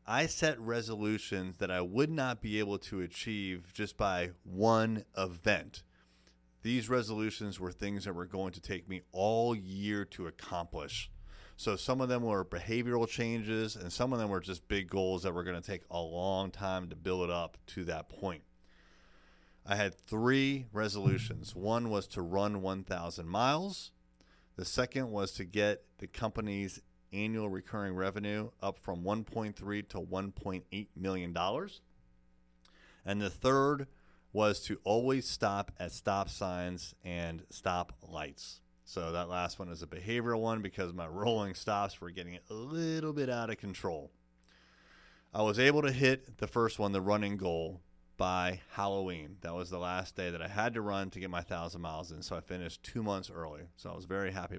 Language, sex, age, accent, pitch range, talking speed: English, male, 30-49, American, 90-110 Hz, 175 wpm